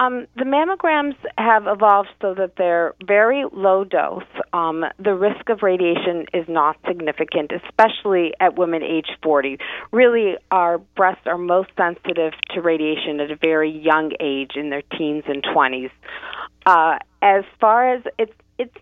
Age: 40-59